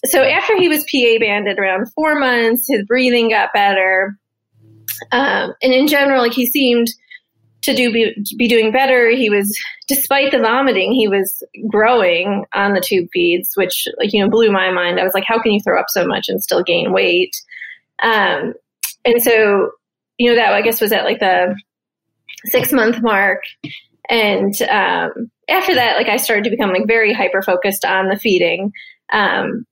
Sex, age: female, 20-39